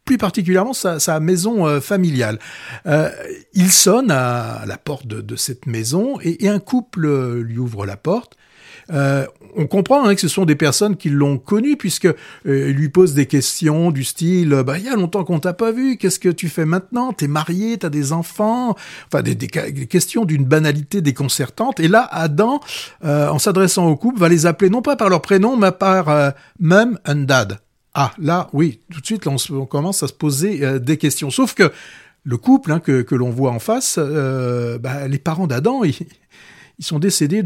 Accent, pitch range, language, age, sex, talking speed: French, 140-195 Hz, French, 60-79, male, 210 wpm